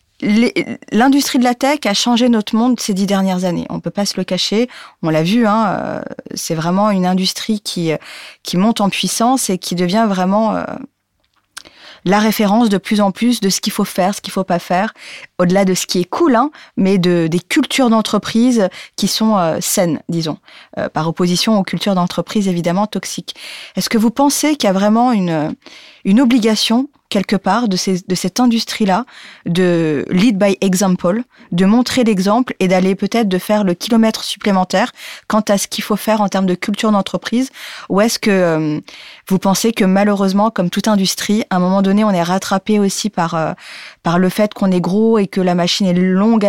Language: French